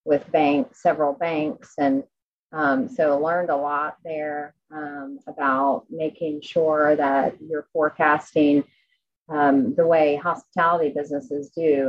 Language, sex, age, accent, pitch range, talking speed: English, female, 30-49, American, 140-155 Hz, 120 wpm